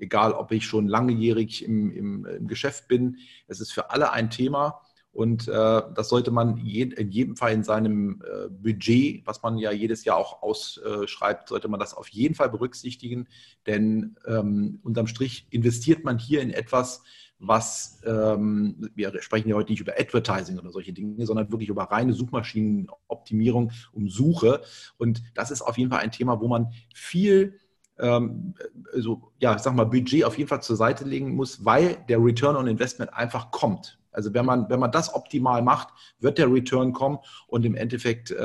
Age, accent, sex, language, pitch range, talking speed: 40-59, German, male, German, 110-130 Hz, 185 wpm